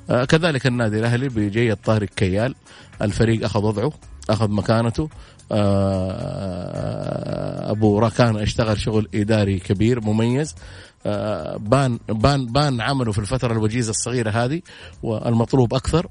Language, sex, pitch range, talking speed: Arabic, male, 105-130 Hz, 105 wpm